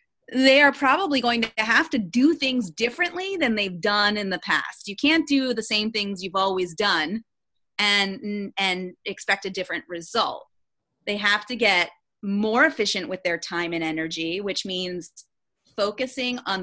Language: English